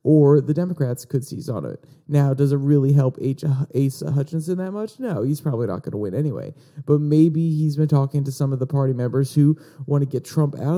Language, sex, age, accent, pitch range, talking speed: English, male, 30-49, American, 135-155 Hz, 235 wpm